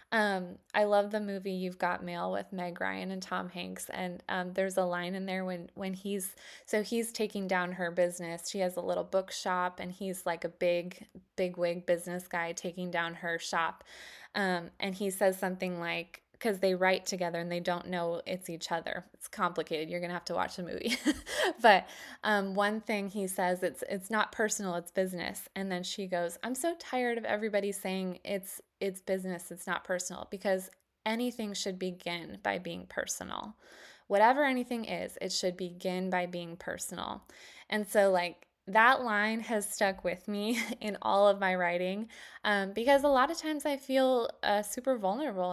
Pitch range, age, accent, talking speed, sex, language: 180-210 Hz, 20-39, American, 190 wpm, female, English